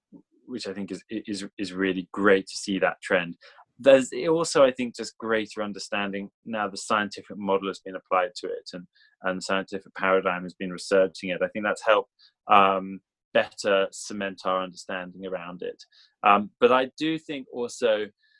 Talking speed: 175 wpm